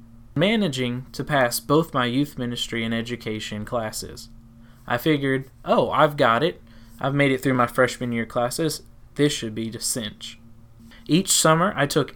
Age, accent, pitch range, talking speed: 20-39, American, 115-145 Hz, 165 wpm